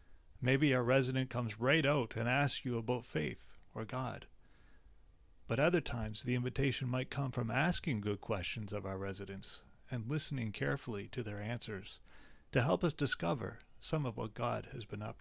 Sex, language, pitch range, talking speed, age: male, English, 95-140 Hz, 175 wpm, 30-49